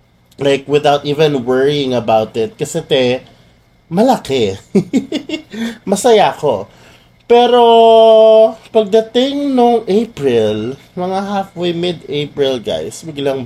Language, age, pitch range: Filipino, 20-39, 125-165 Hz